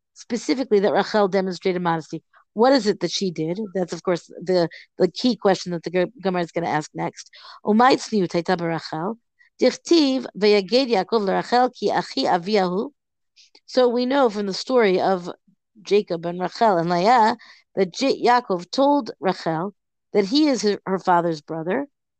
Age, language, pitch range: 50-69, English, 185-245 Hz